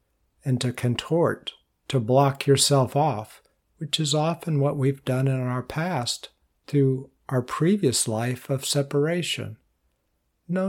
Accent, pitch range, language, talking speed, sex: American, 110-145 Hz, English, 130 wpm, male